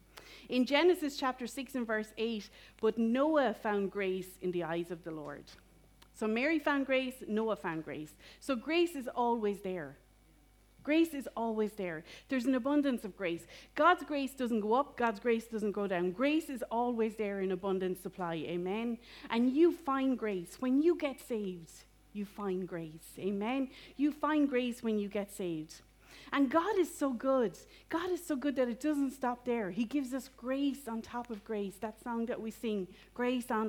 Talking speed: 185 wpm